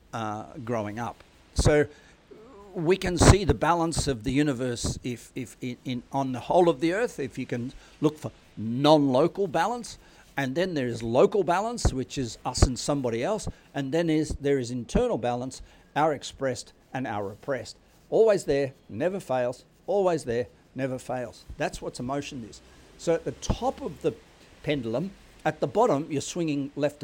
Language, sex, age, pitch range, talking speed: English, male, 50-69, 120-155 Hz, 175 wpm